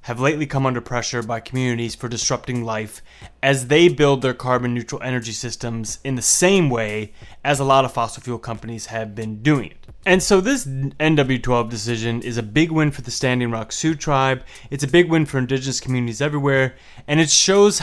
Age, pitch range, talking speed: 20-39, 120-155 Hz, 195 wpm